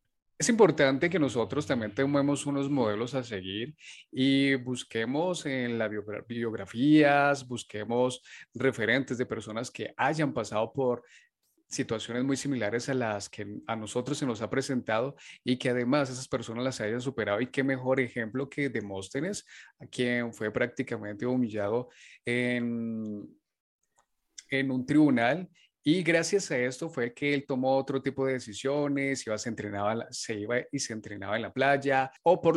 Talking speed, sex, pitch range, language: 155 wpm, male, 115-140 Hz, Spanish